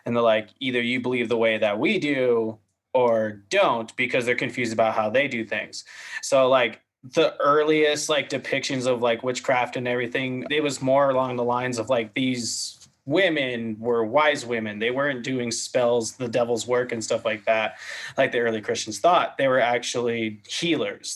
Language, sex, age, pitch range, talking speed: English, male, 20-39, 115-130 Hz, 185 wpm